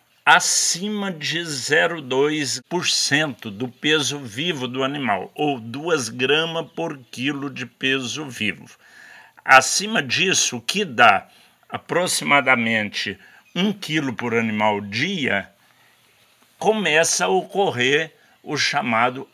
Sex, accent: male, Brazilian